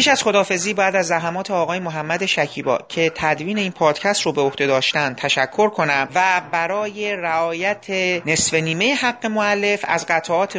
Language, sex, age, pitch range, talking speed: Persian, male, 30-49, 155-195 Hz, 155 wpm